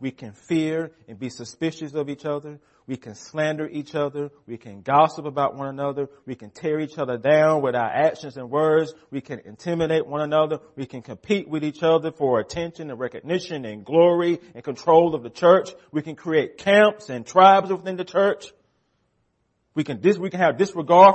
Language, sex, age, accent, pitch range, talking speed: English, male, 30-49, American, 125-180 Hz, 195 wpm